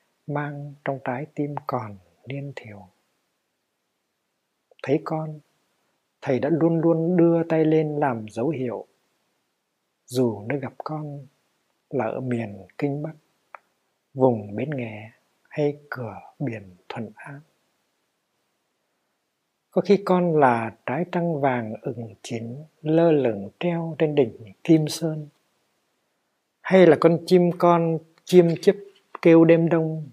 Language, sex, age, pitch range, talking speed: Vietnamese, male, 60-79, 125-160 Hz, 125 wpm